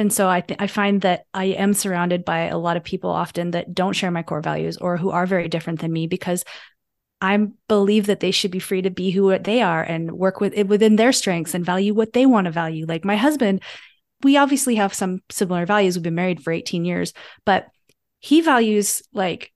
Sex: female